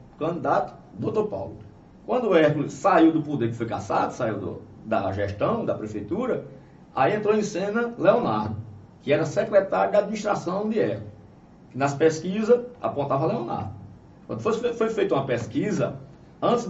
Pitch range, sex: 140-210 Hz, male